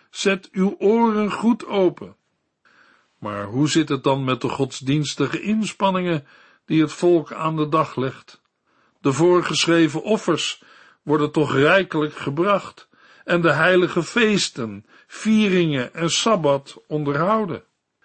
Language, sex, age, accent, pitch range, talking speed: Dutch, male, 60-79, Dutch, 140-185 Hz, 120 wpm